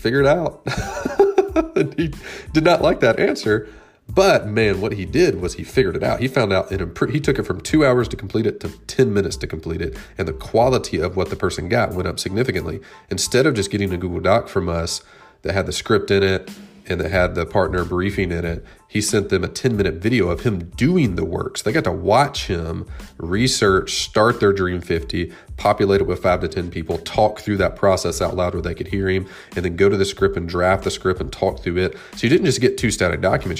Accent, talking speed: American, 240 wpm